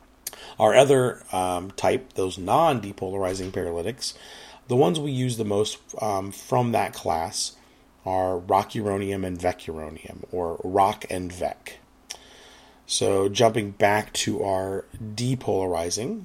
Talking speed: 115 wpm